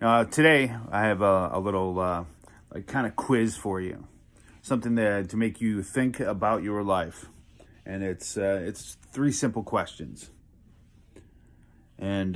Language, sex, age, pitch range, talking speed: English, male, 30-49, 95-110 Hz, 150 wpm